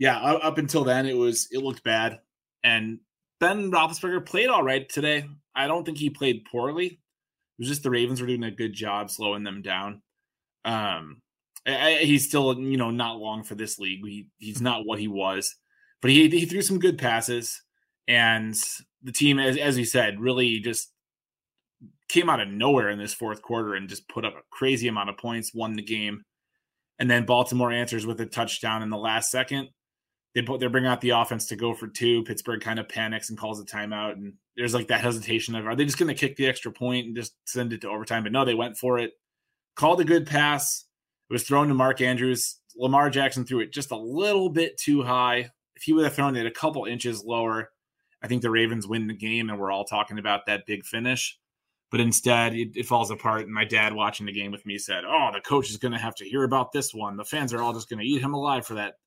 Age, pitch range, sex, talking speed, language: 20-39, 110-135 Hz, male, 235 wpm, English